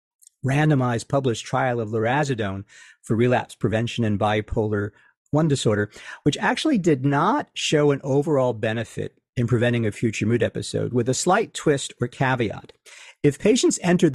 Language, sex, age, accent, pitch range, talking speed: English, male, 50-69, American, 115-150 Hz, 150 wpm